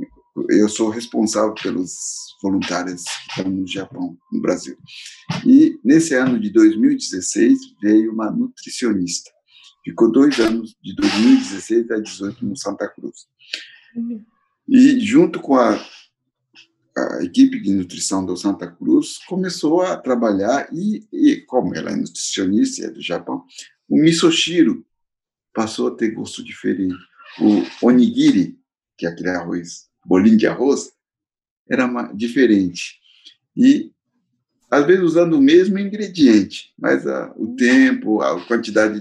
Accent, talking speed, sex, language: Brazilian, 130 wpm, male, Portuguese